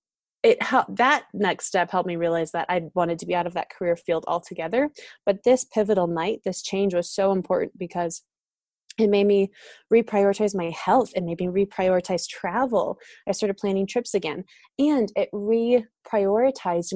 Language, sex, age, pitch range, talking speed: English, female, 20-39, 180-220 Hz, 165 wpm